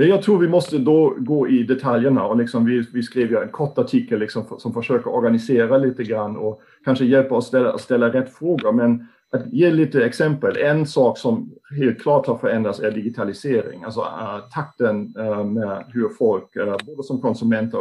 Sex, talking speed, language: male, 195 wpm, Swedish